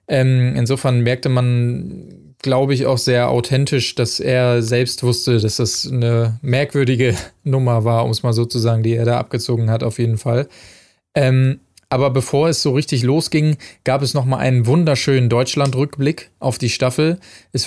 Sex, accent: male, German